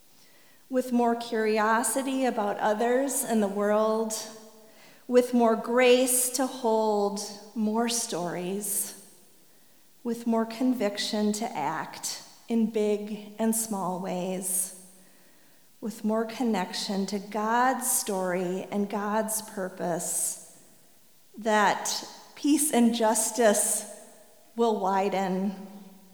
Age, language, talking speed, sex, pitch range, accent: 40-59, English, 90 wpm, female, 195-230 Hz, American